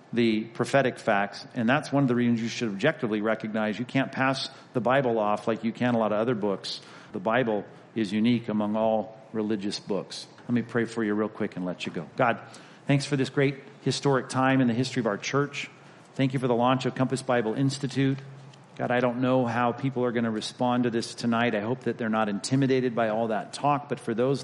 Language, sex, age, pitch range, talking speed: English, male, 40-59, 115-135 Hz, 230 wpm